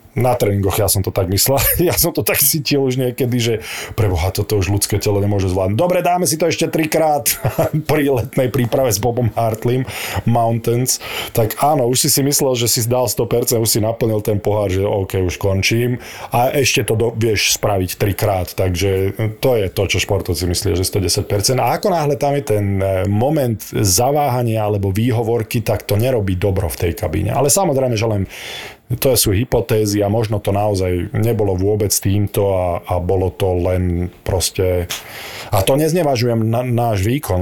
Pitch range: 95-120 Hz